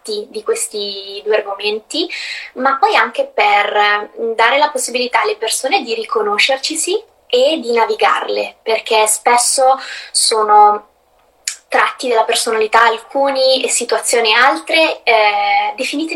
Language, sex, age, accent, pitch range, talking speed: Italian, female, 20-39, native, 210-280 Hz, 110 wpm